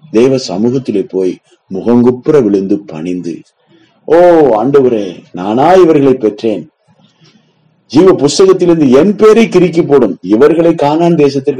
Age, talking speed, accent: 30-49, 105 wpm, native